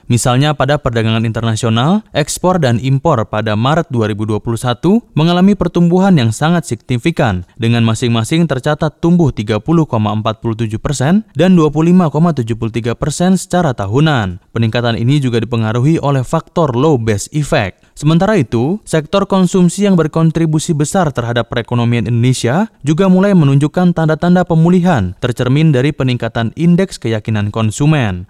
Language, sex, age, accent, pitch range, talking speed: Indonesian, male, 20-39, native, 115-170 Hz, 115 wpm